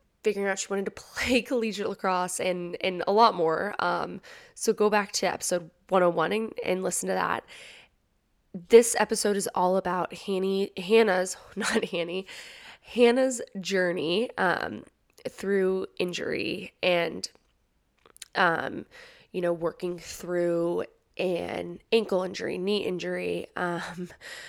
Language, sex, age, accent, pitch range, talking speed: English, female, 20-39, American, 180-215 Hz, 130 wpm